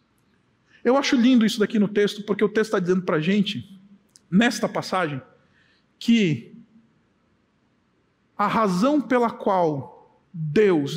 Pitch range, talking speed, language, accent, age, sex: 190-260 Hz, 125 wpm, Italian, Brazilian, 40-59, male